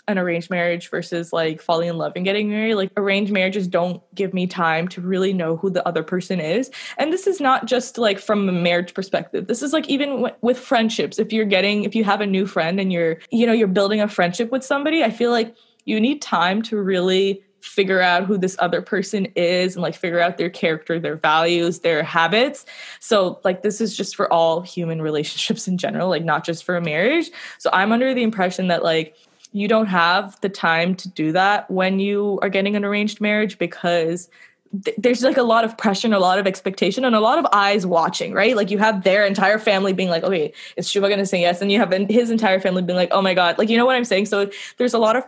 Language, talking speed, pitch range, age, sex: English, 240 wpm, 180-220 Hz, 20-39, female